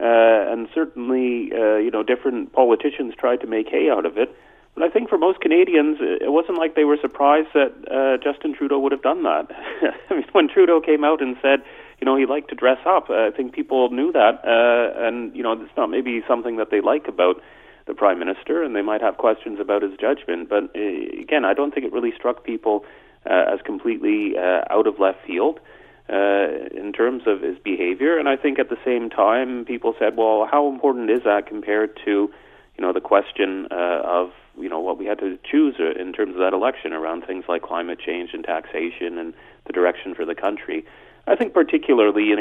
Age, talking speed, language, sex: 30-49, 220 wpm, English, male